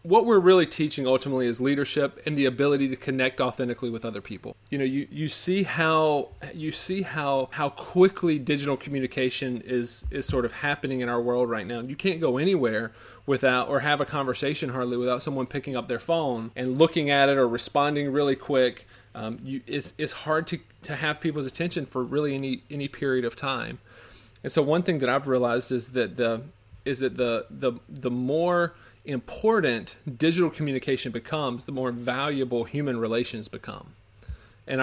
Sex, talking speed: male, 185 wpm